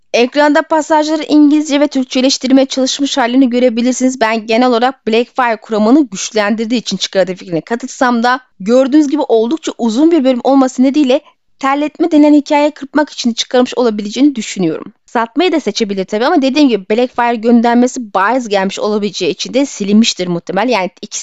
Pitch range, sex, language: 225-290 Hz, female, Turkish